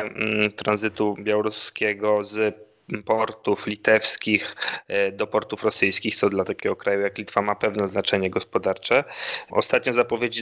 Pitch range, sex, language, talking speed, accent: 105-115 Hz, male, Polish, 115 wpm, native